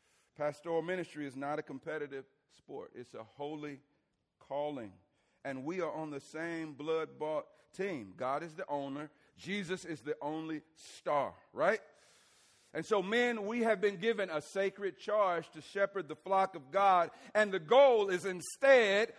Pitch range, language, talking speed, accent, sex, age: 150-210 Hz, English, 155 wpm, American, male, 40-59